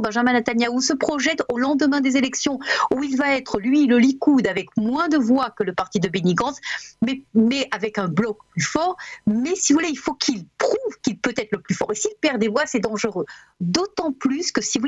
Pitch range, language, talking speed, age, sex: 215-280 Hz, French, 235 wpm, 50-69, female